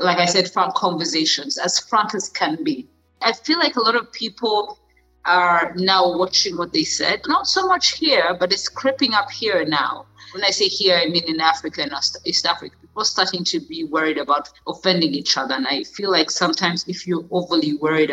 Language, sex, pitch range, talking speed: English, female, 160-225 Hz, 210 wpm